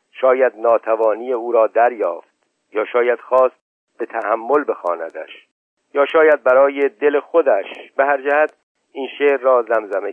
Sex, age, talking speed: male, 50-69, 135 wpm